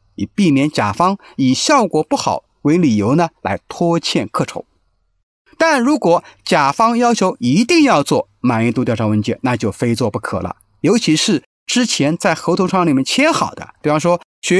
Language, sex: Chinese, male